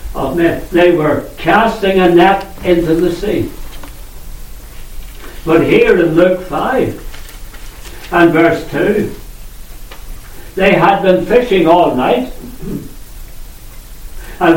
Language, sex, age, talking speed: English, male, 60-79, 105 wpm